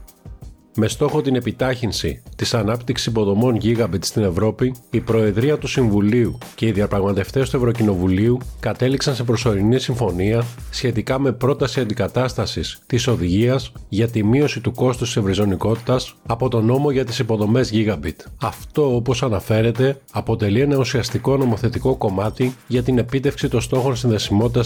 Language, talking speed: Greek, 140 wpm